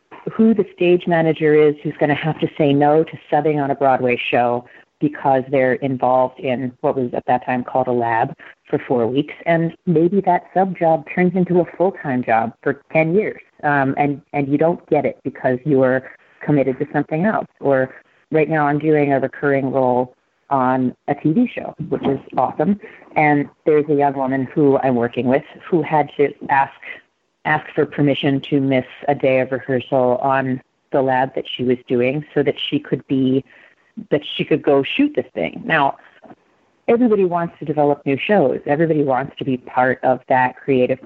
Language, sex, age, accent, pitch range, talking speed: English, female, 30-49, American, 130-160 Hz, 190 wpm